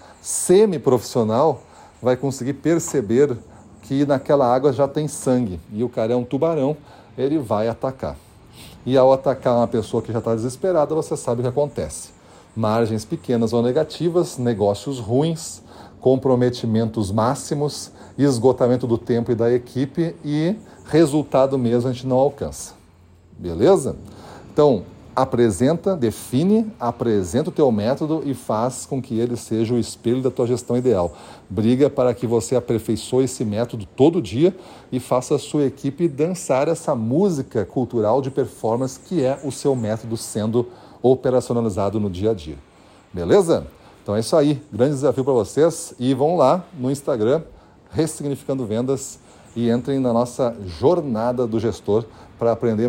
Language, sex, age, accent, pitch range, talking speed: Portuguese, male, 40-59, Brazilian, 110-140 Hz, 145 wpm